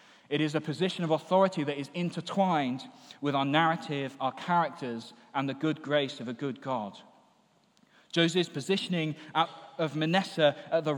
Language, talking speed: English, 155 wpm